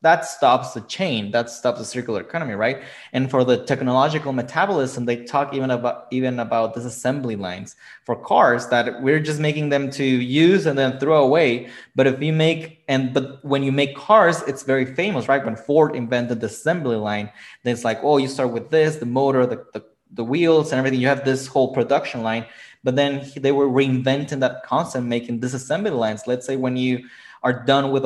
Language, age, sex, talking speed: English, 20-39, male, 200 wpm